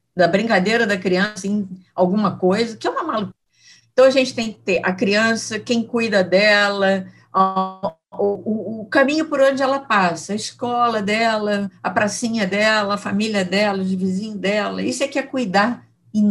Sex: female